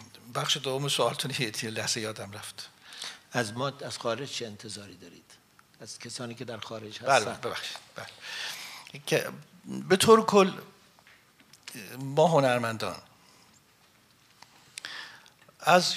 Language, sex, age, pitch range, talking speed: English, male, 60-79, 115-140 Hz, 110 wpm